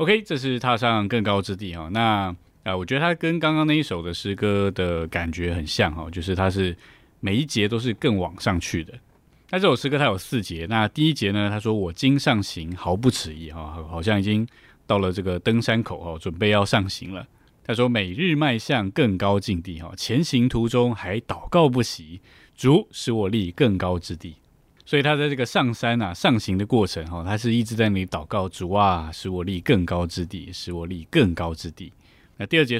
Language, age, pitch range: Chinese, 20-39, 90-120 Hz